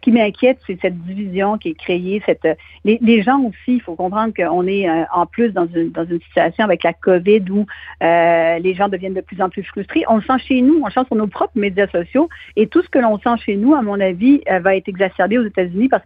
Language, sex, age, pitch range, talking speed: French, female, 50-69, 190-240 Hz, 255 wpm